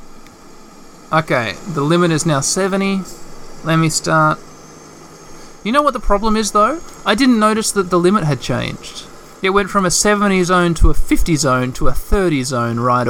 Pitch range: 145-190 Hz